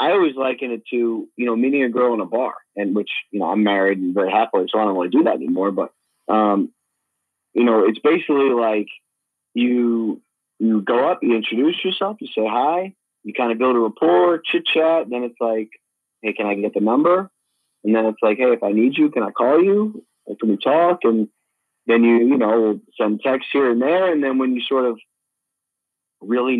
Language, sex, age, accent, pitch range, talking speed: English, male, 30-49, American, 110-135 Hz, 225 wpm